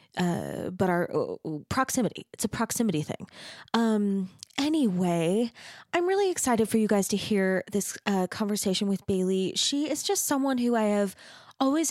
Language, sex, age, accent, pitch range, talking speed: English, female, 20-39, American, 180-210 Hz, 160 wpm